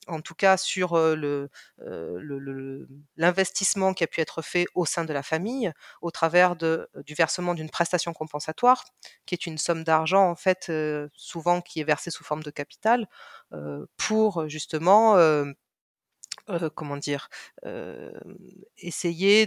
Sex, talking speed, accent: female, 140 wpm, French